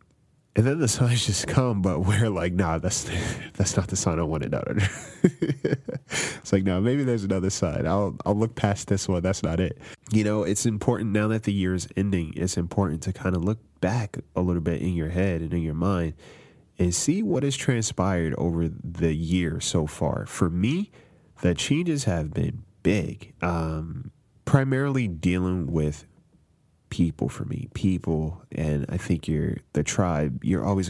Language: English